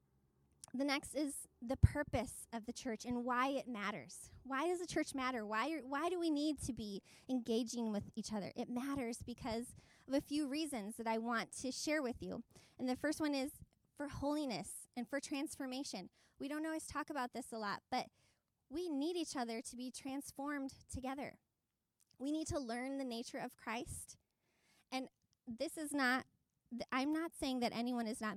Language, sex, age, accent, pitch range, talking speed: English, female, 20-39, American, 235-280 Hz, 185 wpm